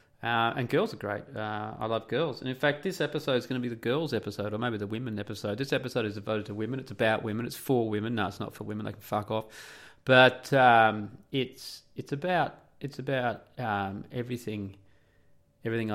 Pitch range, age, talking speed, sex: 105-125 Hz, 30-49, 215 wpm, male